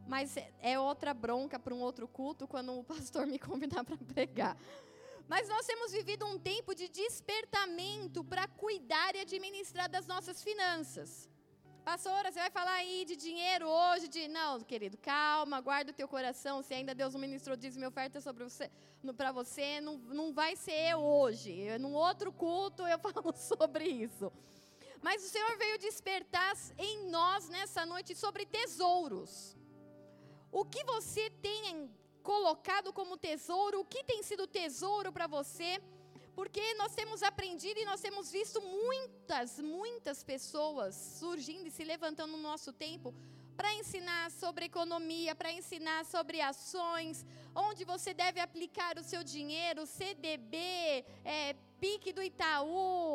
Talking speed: 155 wpm